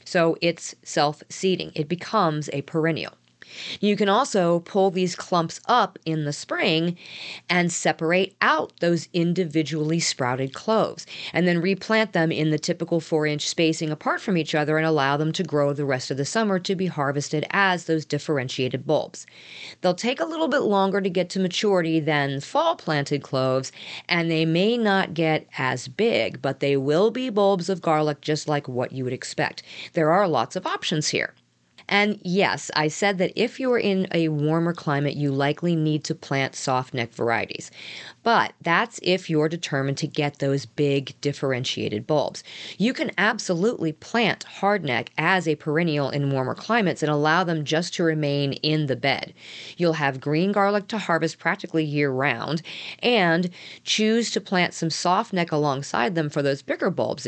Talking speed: 175 wpm